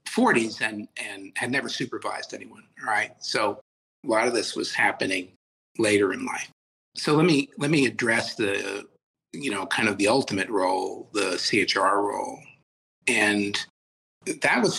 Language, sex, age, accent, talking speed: English, male, 50-69, American, 160 wpm